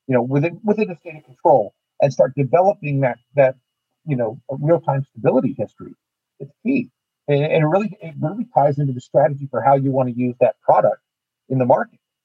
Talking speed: 195 wpm